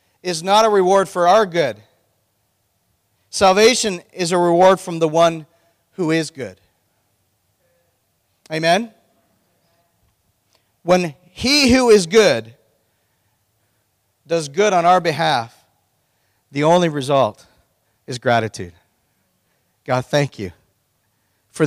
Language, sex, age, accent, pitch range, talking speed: English, male, 40-59, American, 115-190 Hz, 100 wpm